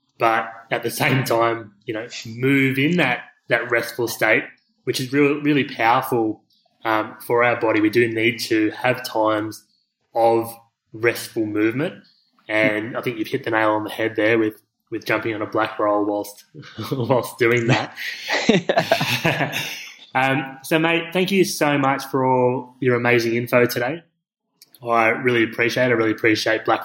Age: 20-39